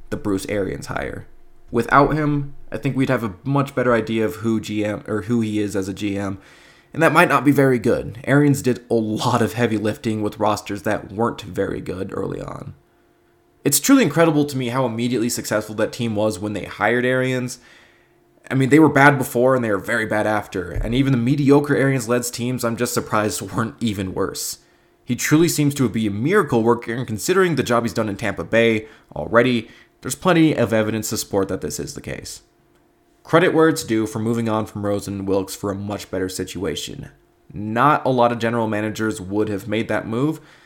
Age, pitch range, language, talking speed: 20-39, 105-135 Hz, English, 205 wpm